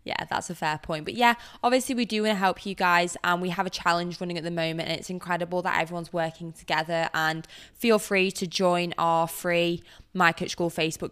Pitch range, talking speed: 160-185 Hz, 225 wpm